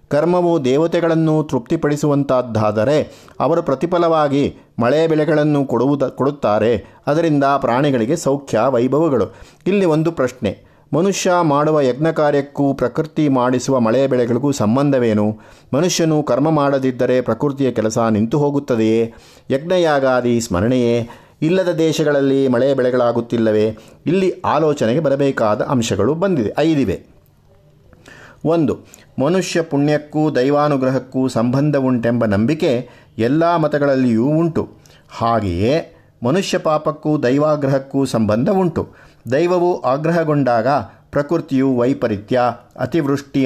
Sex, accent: male, native